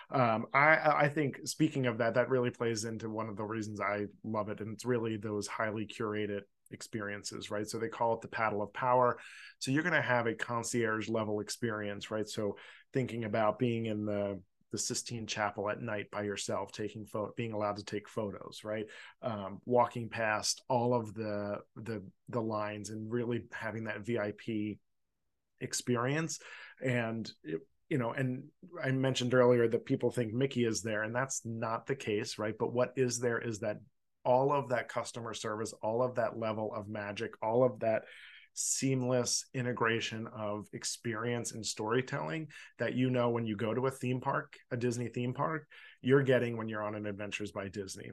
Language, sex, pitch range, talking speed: English, male, 105-125 Hz, 185 wpm